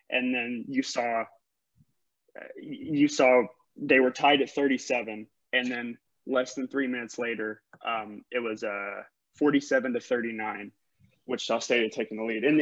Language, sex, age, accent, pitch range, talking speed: English, male, 20-39, American, 120-140 Hz, 150 wpm